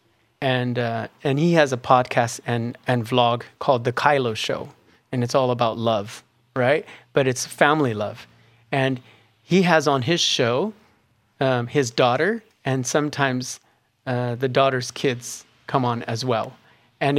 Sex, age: male, 40-59